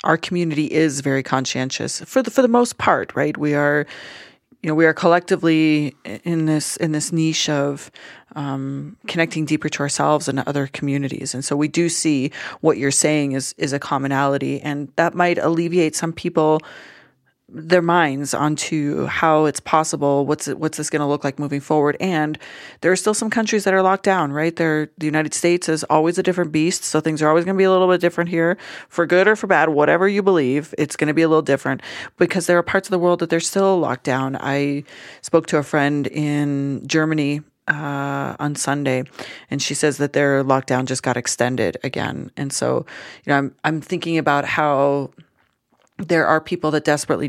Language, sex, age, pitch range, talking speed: English, female, 30-49, 140-170 Hz, 200 wpm